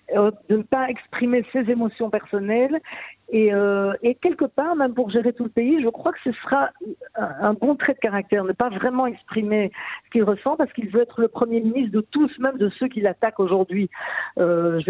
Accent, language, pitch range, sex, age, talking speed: French, French, 195-240 Hz, female, 50-69, 200 wpm